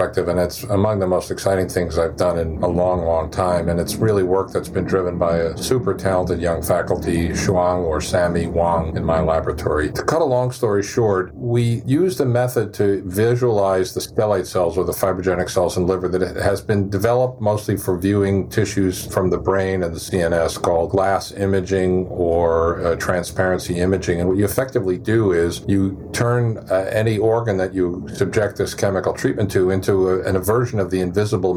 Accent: American